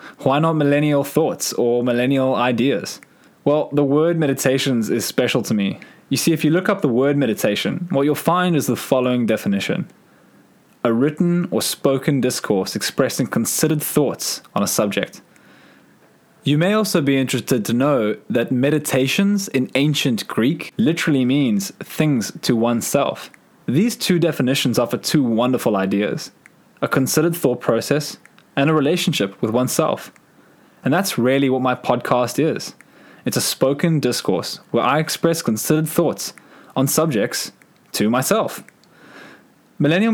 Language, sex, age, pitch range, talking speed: English, male, 20-39, 125-160 Hz, 145 wpm